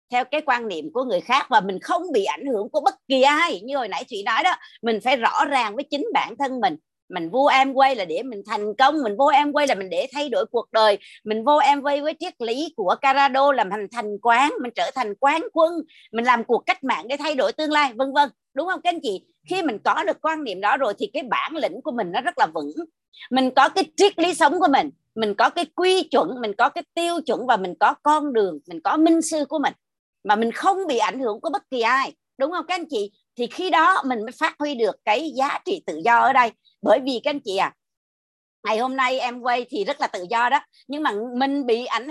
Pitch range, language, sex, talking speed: 235-320 Hz, Vietnamese, female, 265 wpm